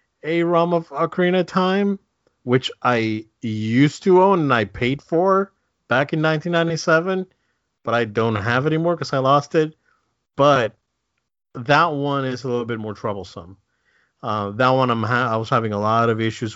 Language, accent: English, American